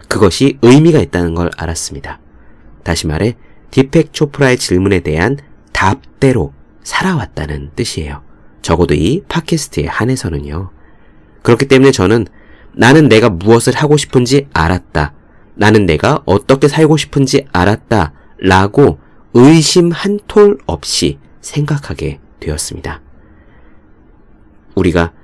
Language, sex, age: Korean, male, 30-49